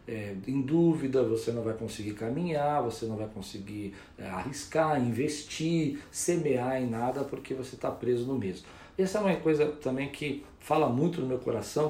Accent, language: Brazilian, Portuguese